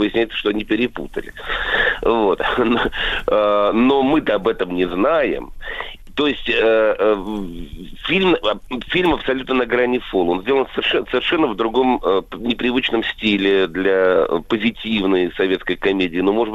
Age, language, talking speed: 40-59, Russian, 115 wpm